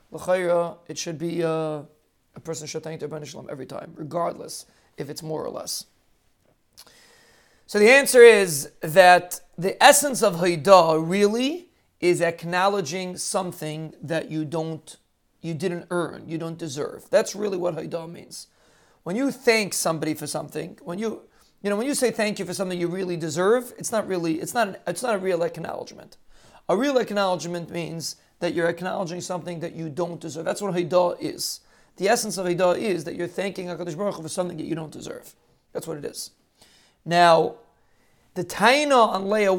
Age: 40-59